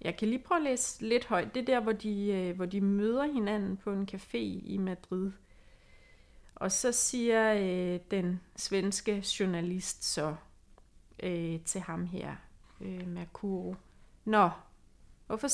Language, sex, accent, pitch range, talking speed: Danish, female, native, 175-215 Hz, 150 wpm